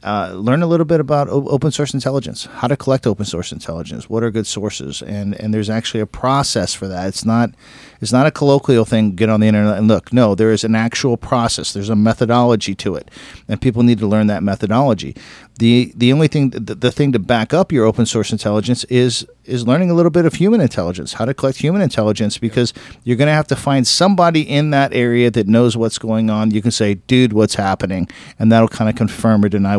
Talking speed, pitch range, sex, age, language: 230 wpm, 105-130 Hz, male, 50-69, English